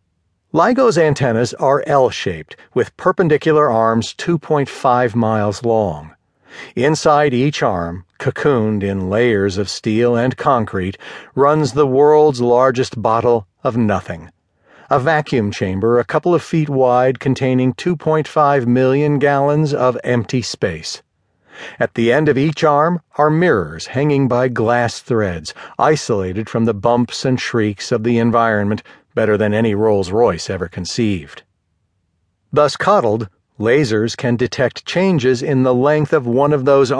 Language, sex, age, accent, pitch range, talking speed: English, male, 50-69, American, 105-150 Hz, 135 wpm